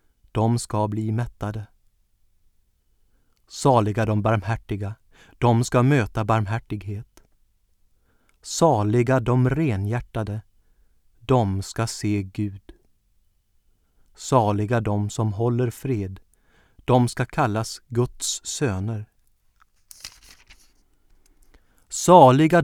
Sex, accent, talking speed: male, native, 75 wpm